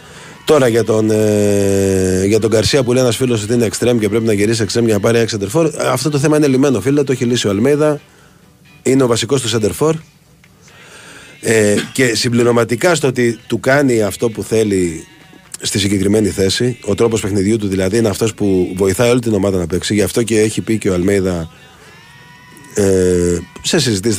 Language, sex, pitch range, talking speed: Greek, male, 95-130 Hz, 190 wpm